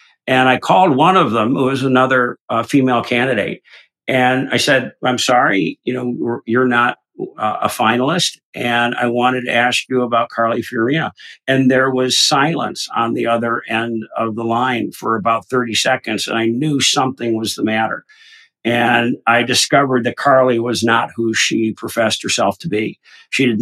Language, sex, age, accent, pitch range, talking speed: English, male, 50-69, American, 115-130 Hz, 175 wpm